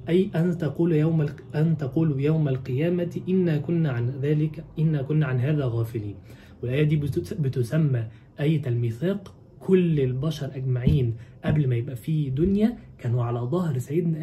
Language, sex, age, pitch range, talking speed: Arabic, male, 20-39, 120-160 Hz, 145 wpm